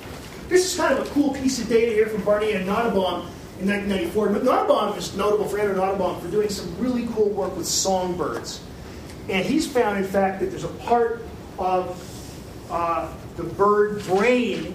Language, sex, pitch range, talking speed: English, male, 185-230 Hz, 180 wpm